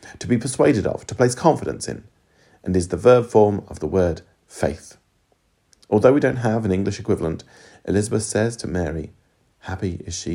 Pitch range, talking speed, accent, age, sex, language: 95-115 Hz, 180 wpm, British, 40-59, male, English